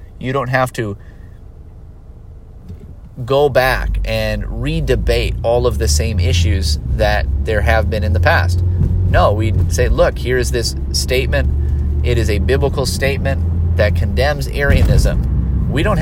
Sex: male